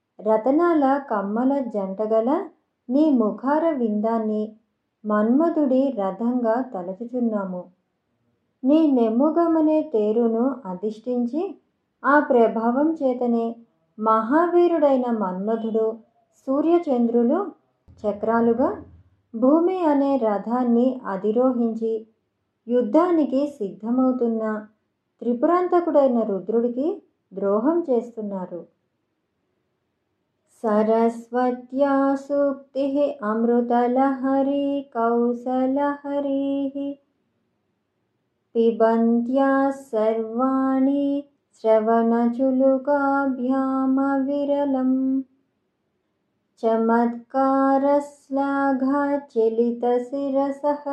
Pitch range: 225-280 Hz